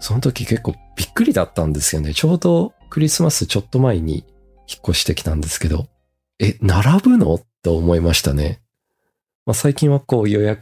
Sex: male